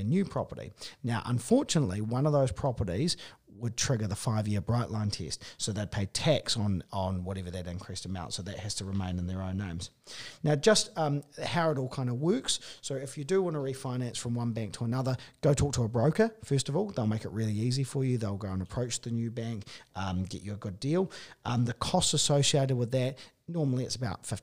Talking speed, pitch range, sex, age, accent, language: 230 wpm, 100-135 Hz, male, 40-59, Australian, English